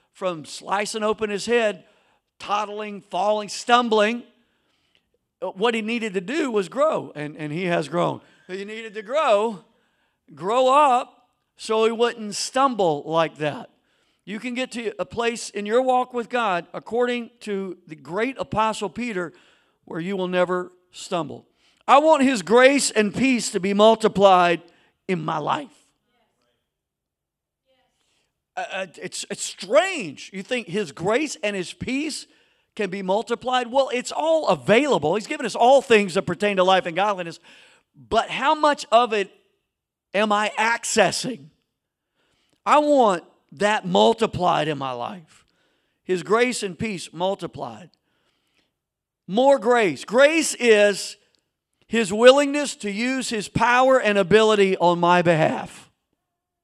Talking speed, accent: 140 wpm, American